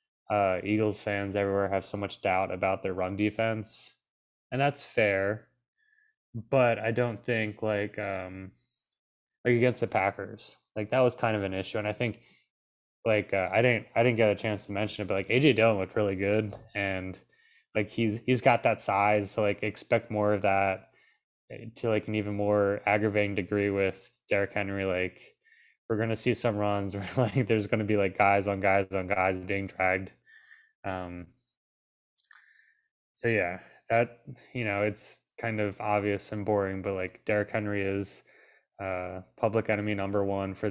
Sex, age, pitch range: male, 10-29, 100-115 Hz